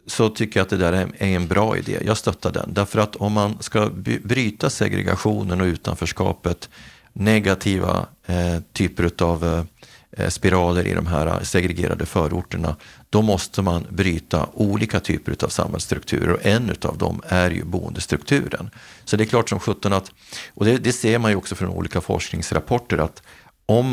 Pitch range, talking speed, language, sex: 90-110 Hz, 165 wpm, Swedish, male